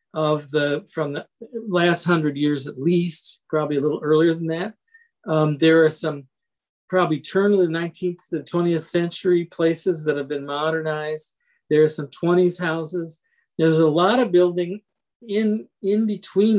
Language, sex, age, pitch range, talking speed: English, male, 50-69, 155-190 Hz, 165 wpm